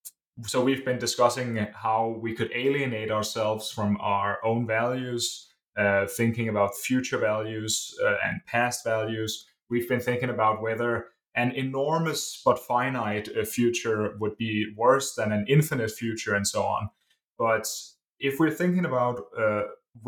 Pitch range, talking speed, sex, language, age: 110-130 Hz, 145 wpm, male, English, 20-39